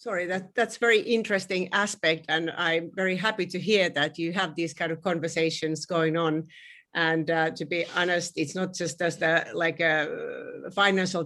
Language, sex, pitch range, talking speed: English, female, 160-185 Hz, 180 wpm